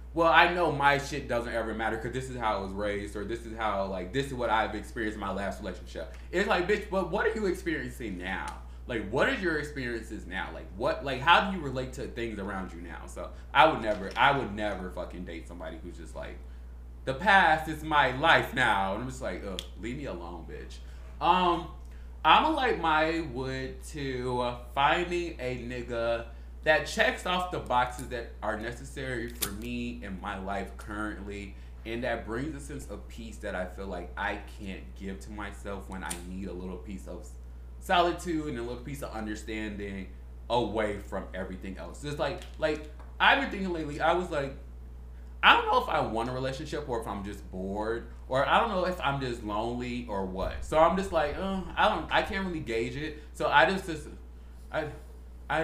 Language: English